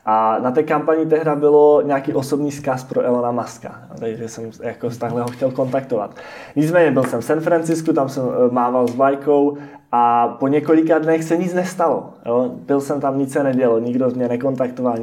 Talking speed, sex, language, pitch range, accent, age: 190 wpm, male, Czech, 125-145 Hz, native, 20-39